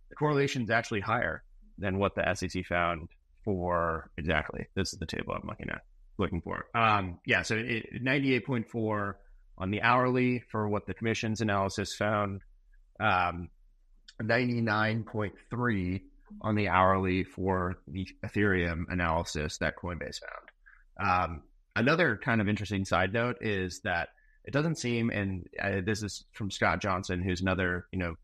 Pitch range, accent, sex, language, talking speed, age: 90-110 Hz, American, male, English, 150 wpm, 30-49